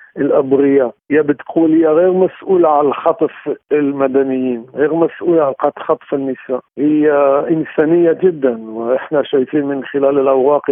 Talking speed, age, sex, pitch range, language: 120 wpm, 50-69, male, 125-160 Hz, Arabic